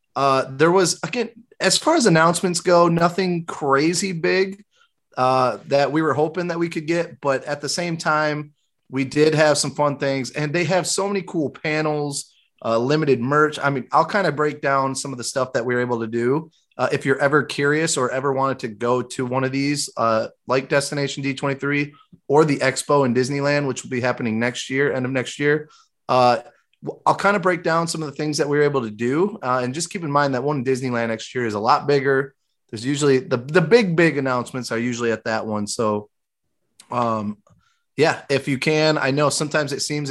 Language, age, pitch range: English, 30-49, 125-150 Hz